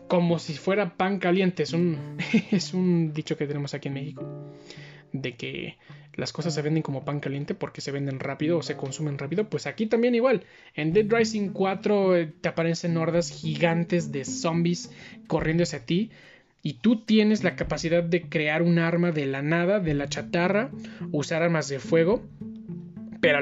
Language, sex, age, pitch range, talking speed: Spanish, male, 20-39, 150-185 Hz, 175 wpm